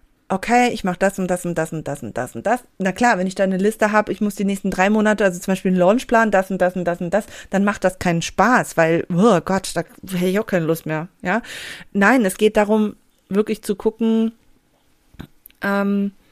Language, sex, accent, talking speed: German, female, German, 235 wpm